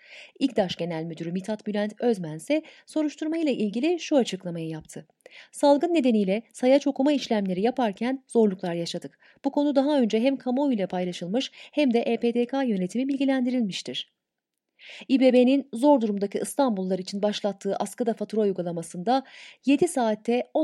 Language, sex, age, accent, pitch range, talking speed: Turkish, female, 30-49, native, 200-275 Hz, 125 wpm